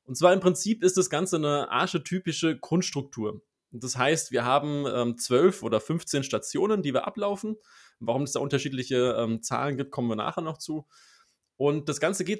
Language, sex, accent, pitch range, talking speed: German, male, German, 130-175 Hz, 185 wpm